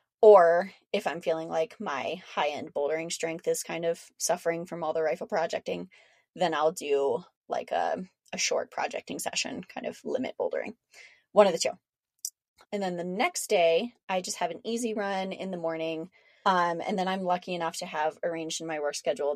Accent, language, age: American, English, 20-39